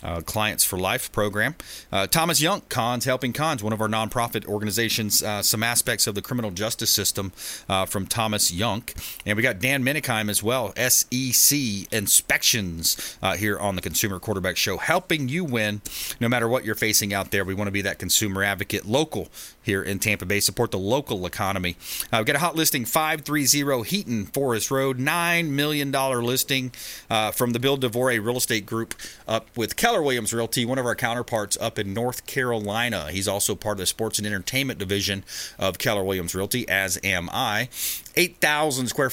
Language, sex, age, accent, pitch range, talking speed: English, male, 30-49, American, 100-130 Hz, 190 wpm